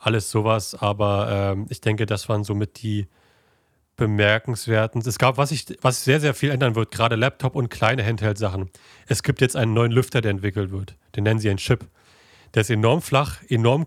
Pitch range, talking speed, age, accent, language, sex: 105-120 Hz, 195 wpm, 30-49, German, German, male